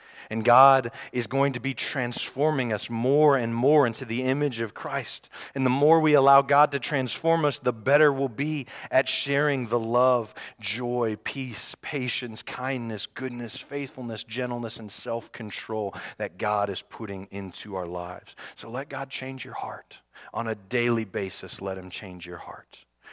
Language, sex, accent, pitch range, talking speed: English, male, American, 90-125 Hz, 165 wpm